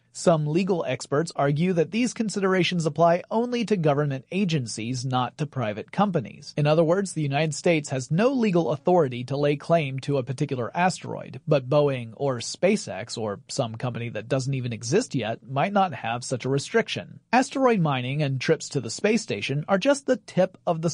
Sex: male